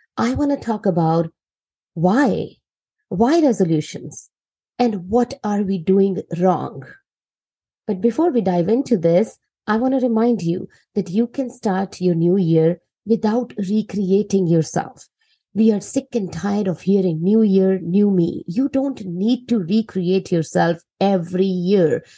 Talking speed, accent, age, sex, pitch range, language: 145 wpm, Indian, 50-69, female, 175-225 Hz, English